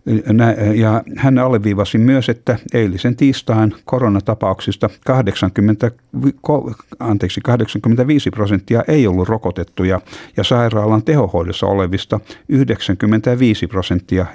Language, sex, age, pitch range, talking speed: Finnish, male, 50-69, 95-115 Hz, 75 wpm